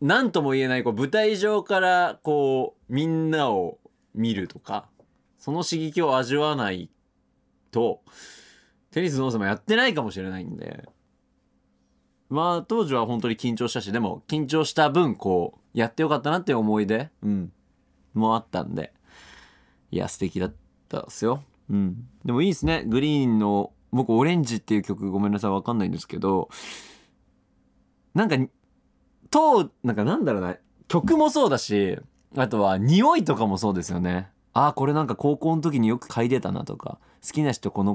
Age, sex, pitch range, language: 20-39, male, 85-145 Hz, Japanese